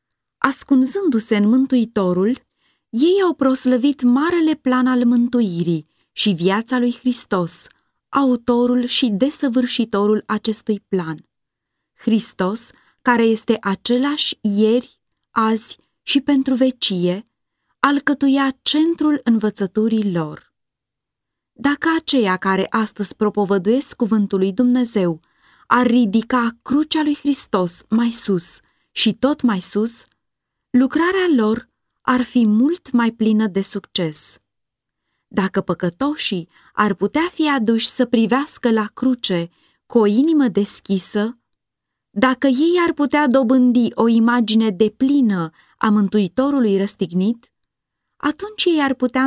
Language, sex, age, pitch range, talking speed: Romanian, female, 20-39, 195-260 Hz, 110 wpm